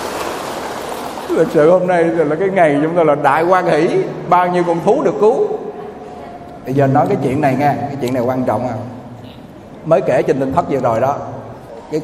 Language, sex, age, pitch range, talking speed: Vietnamese, male, 20-39, 135-175 Hz, 205 wpm